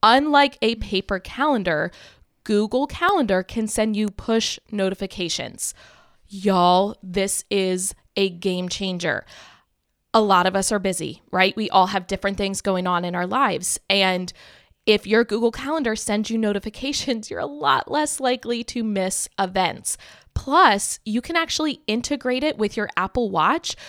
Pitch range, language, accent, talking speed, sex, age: 190-235 Hz, English, American, 150 wpm, female, 20-39